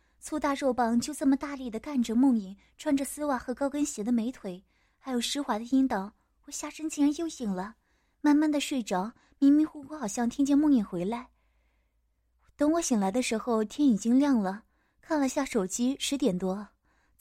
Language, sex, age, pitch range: Chinese, female, 20-39, 215-280 Hz